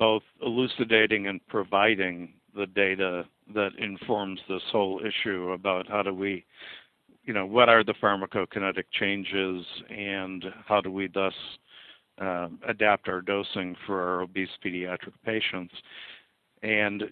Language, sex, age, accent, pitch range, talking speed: English, male, 50-69, American, 95-110 Hz, 130 wpm